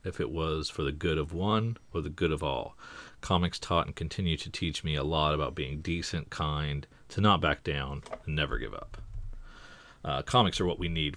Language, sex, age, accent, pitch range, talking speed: English, male, 40-59, American, 75-90 Hz, 215 wpm